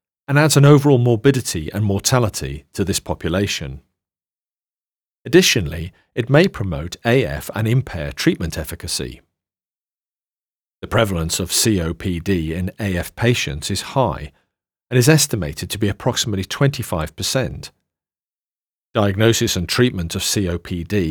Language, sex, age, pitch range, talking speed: English, male, 40-59, 85-115 Hz, 115 wpm